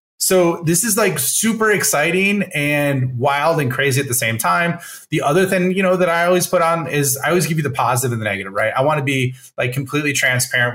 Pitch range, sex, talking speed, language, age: 125-155 Hz, male, 235 wpm, English, 30-49